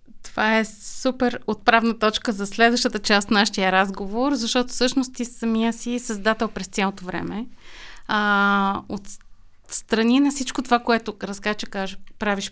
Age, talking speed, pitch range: 30-49, 150 wpm, 195-235 Hz